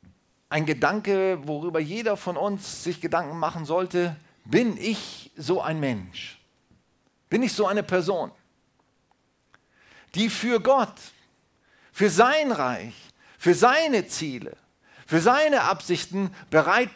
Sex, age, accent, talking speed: male, 40-59, German, 115 wpm